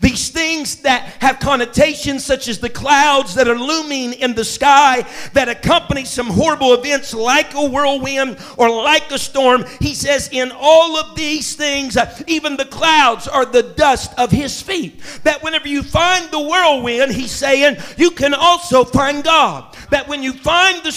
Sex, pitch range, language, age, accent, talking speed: male, 260-310 Hz, English, 50-69, American, 175 wpm